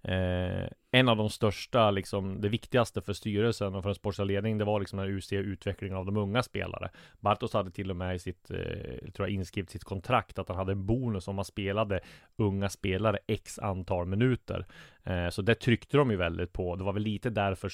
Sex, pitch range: male, 95-110 Hz